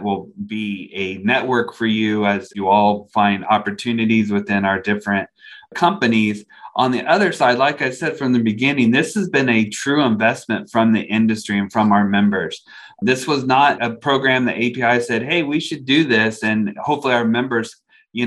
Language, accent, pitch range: English, American, 105-120 Hz